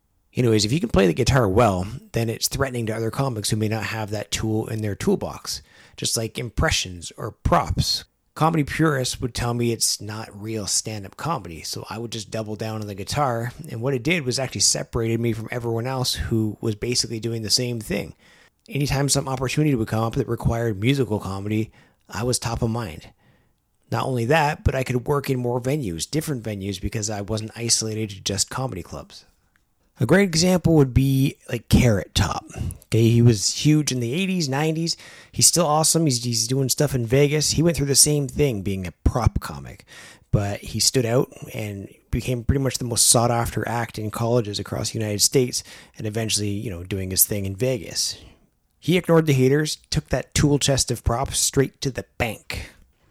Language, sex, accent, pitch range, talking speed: English, male, American, 105-135 Hz, 200 wpm